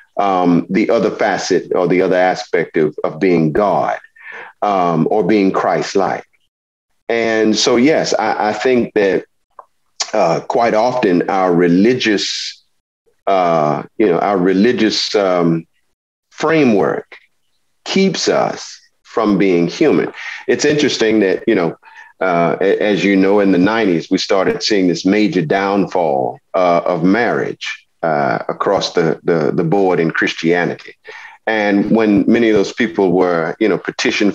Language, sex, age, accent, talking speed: English, male, 40-59, American, 140 wpm